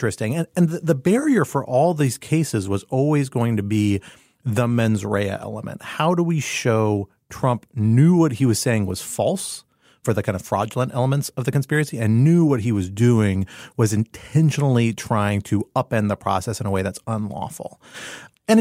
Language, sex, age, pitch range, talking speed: English, male, 30-49, 105-140 Hz, 185 wpm